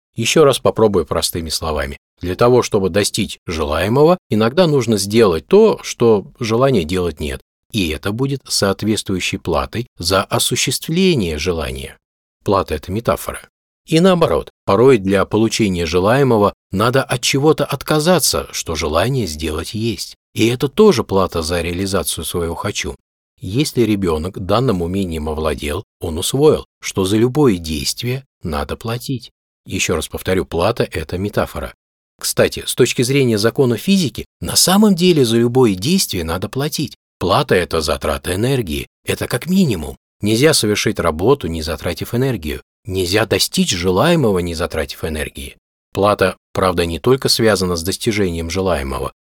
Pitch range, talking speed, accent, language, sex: 85-130 Hz, 135 wpm, native, Russian, male